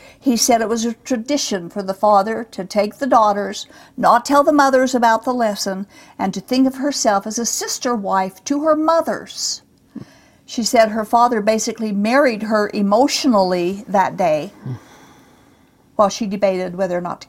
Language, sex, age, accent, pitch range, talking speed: English, female, 50-69, American, 195-255 Hz, 170 wpm